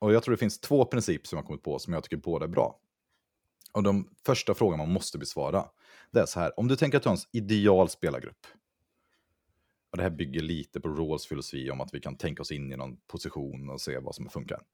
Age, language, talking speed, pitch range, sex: 30-49, Swedish, 240 wpm, 85-115 Hz, male